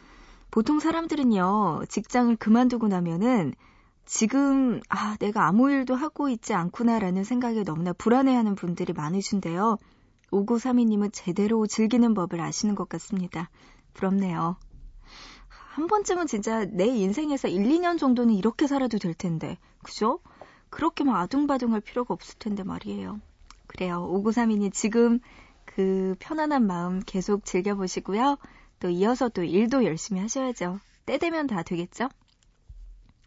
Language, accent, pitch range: Korean, native, 185-245 Hz